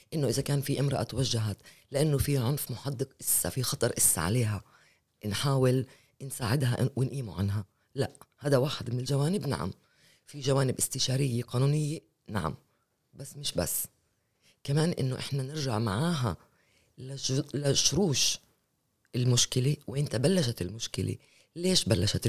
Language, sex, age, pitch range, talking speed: Arabic, female, 20-39, 115-145 Hz, 125 wpm